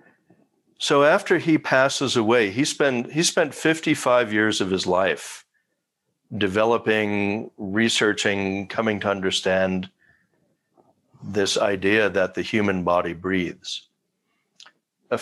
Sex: male